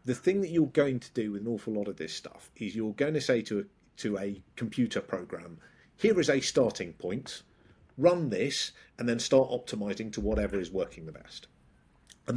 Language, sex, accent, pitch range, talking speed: English, male, British, 105-130 Hz, 205 wpm